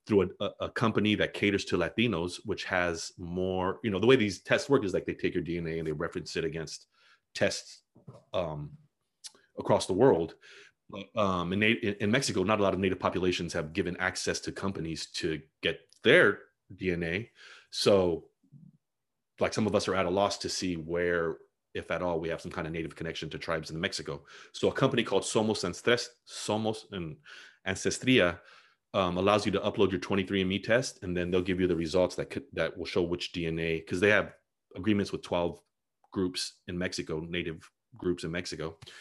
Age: 30-49